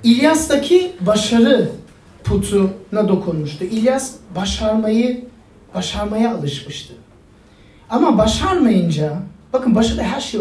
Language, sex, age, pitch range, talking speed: Turkish, male, 40-59, 185-265 Hz, 80 wpm